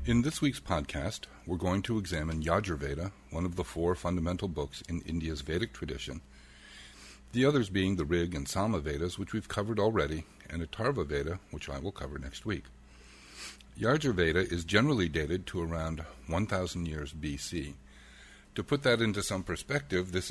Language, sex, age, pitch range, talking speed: English, male, 60-79, 75-100 Hz, 170 wpm